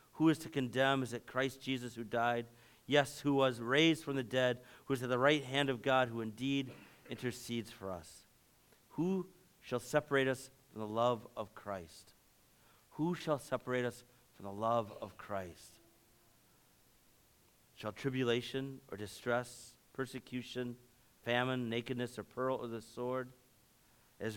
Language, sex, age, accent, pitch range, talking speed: English, male, 50-69, American, 110-135 Hz, 150 wpm